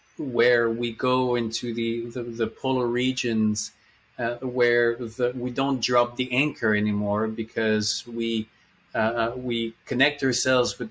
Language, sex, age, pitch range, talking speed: English, male, 30-49, 115-130 Hz, 140 wpm